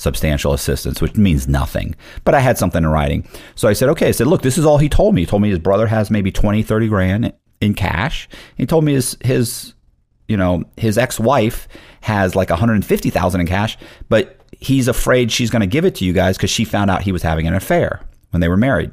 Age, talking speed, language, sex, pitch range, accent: 40-59, 235 wpm, English, male, 85-110 Hz, American